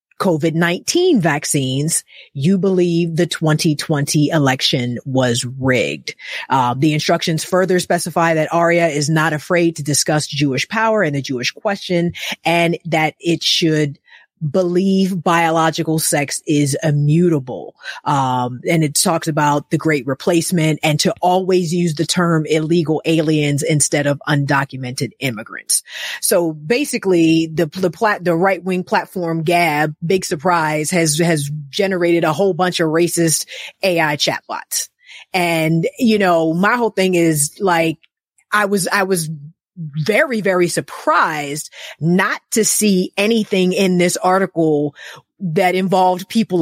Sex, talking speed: female, 135 wpm